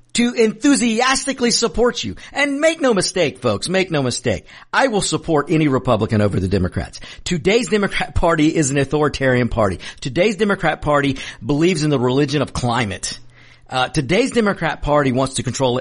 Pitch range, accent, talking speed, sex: 125-205 Hz, American, 165 wpm, male